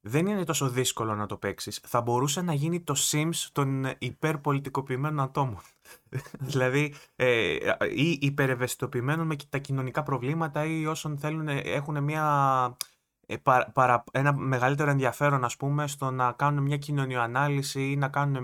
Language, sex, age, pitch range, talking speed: Greek, male, 20-39, 120-150 Hz, 145 wpm